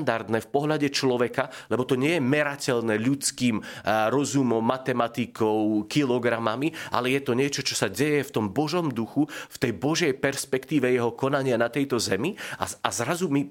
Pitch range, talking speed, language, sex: 125-145 Hz, 155 wpm, Slovak, male